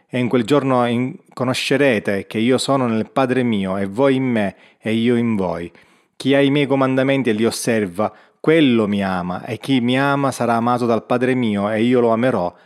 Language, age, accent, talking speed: Italian, 30-49, native, 205 wpm